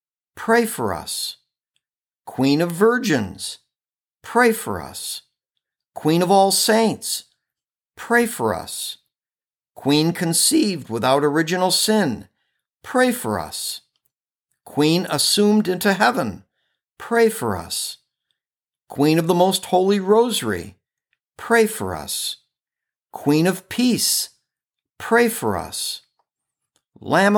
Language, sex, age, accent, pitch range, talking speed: English, male, 60-79, American, 150-210 Hz, 105 wpm